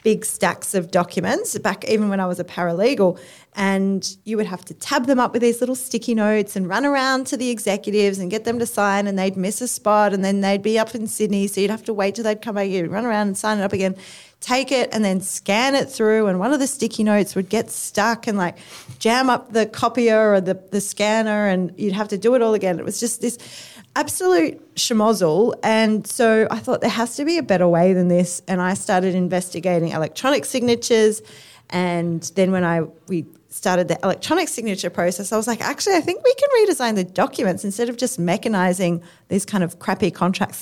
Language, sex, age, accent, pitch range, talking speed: English, female, 30-49, Australian, 180-230 Hz, 225 wpm